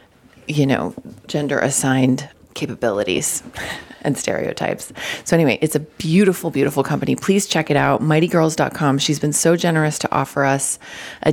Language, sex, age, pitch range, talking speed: English, female, 30-49, 140-165 Hz, 145 wpm